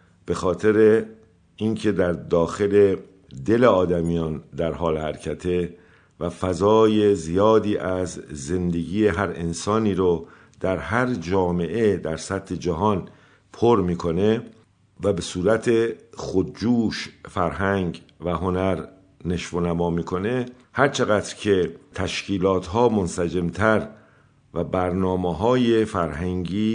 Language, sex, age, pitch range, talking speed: Persian, male, 50-69, 90-115 Hz, 110 wpm